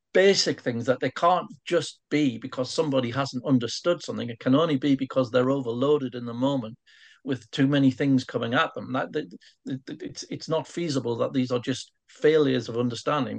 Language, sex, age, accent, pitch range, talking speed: English, male, 50-69, British, 120-135 Hz, 195 wpm